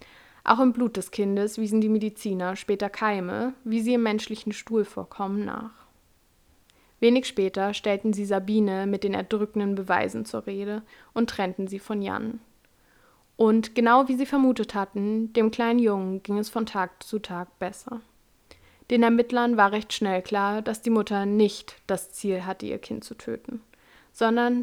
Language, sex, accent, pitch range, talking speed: German, female, German, 195-230 Hz, 165 wpm